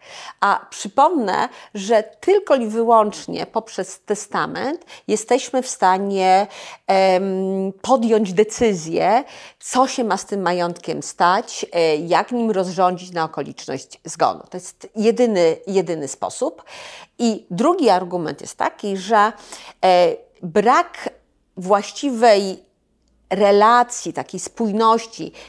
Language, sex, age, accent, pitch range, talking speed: Polish, female, 40-59, native, 180-235 Hz, 95 wpm